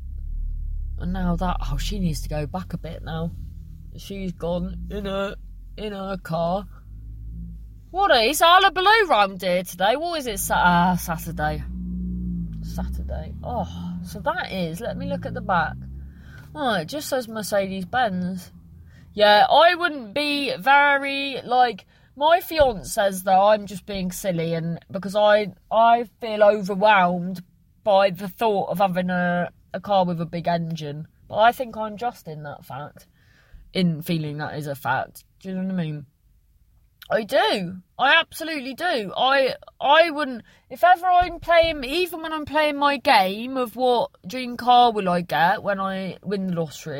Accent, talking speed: British, 165 wpm